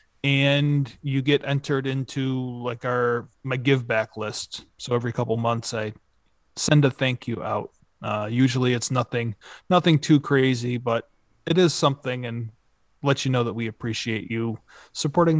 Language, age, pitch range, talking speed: English, 30-49, 120-145 Hz, 160 wpm